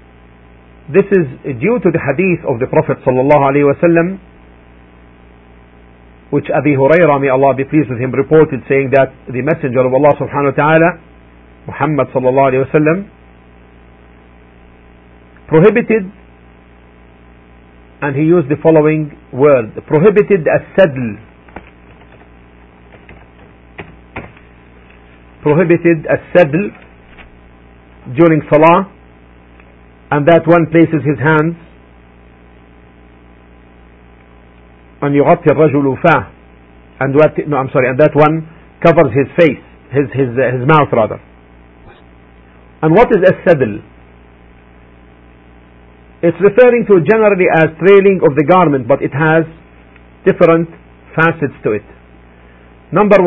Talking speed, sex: 105 wpm, male